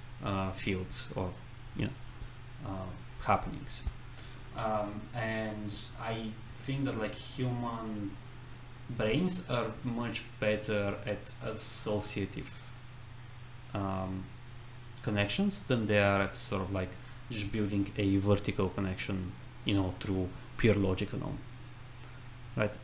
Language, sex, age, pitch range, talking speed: English, male, 20-39, 105-125 Hz, 110 wpm